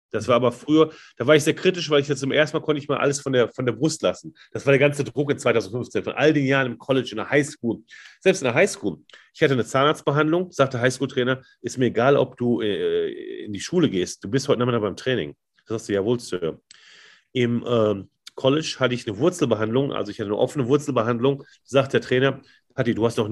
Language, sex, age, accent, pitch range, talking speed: German, male, 40-59, German, 120-145 Hz, 240 wpm